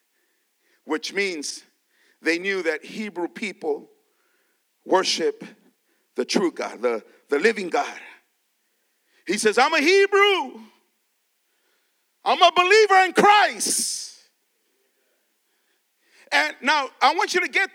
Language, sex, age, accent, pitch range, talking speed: English, male, 50-69, American, 265-425 Hz, 110 wpm